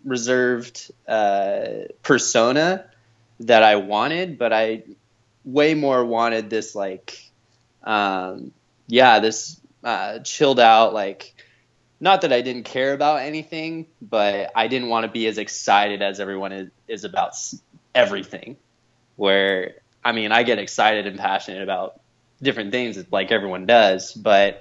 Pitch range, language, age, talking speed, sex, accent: 100-120 Hz, English, 20-39, 135 wpm, male, American